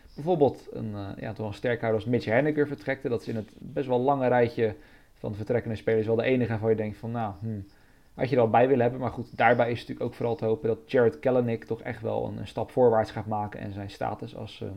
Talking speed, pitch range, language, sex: 250 wpm, 105-120 Hz, Dutch, male